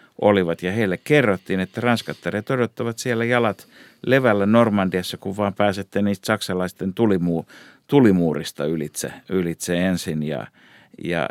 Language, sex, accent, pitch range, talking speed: Finnish, male, native, 90-115 Hz, 120 wpm